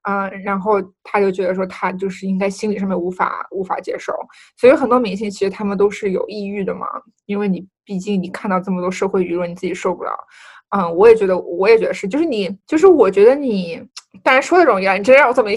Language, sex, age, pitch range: Chinese, female, 20-39, 195-290 Hz